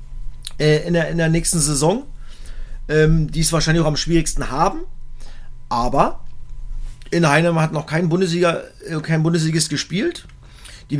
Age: 40-59